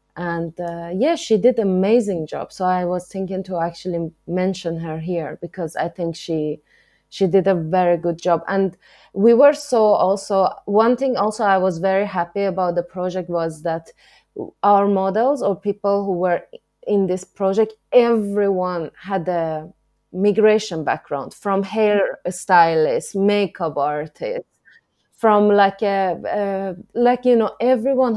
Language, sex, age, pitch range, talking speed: English, female, 20-39, 175-200 Hz, 150 wpm